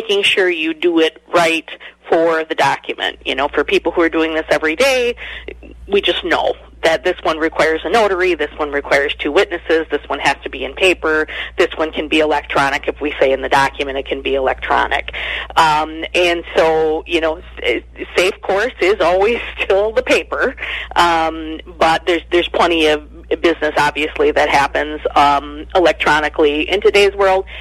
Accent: American